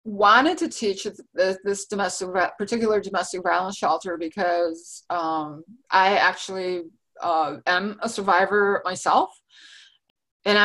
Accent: American